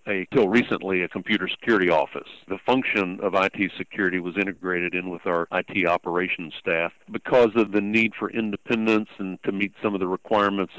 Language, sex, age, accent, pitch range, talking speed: English, male, 50-69, American, 90-105 Hz, 180 wpm